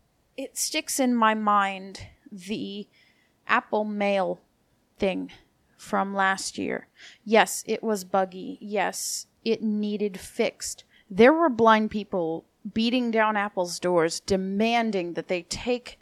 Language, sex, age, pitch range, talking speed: English, female, 30-49, 190-230 Hz, 120 wpm